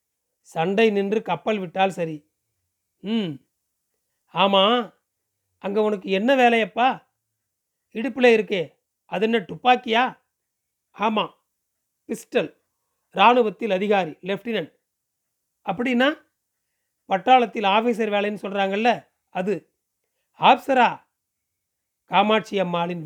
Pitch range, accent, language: 185-235 Hz, native, Tamil